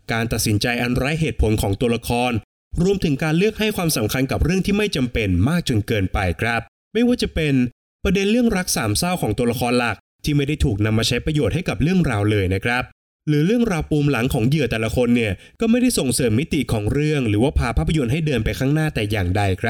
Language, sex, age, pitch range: Thai, male, 20-39, 115-155 Hz